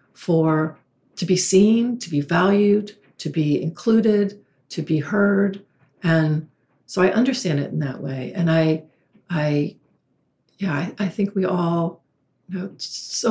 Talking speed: 150 wpm